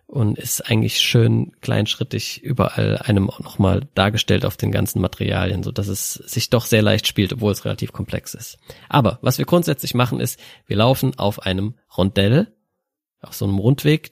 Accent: German